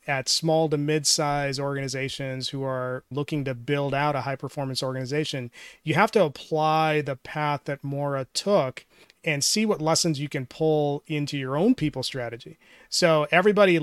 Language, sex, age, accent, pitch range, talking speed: English, male, 30-49, American, 140-160 Hz, 165 wpm